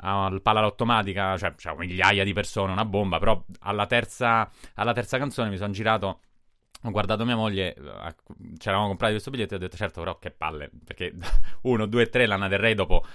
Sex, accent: male, native